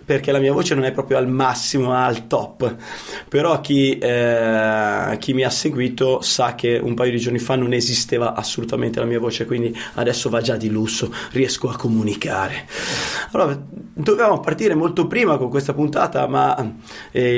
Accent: native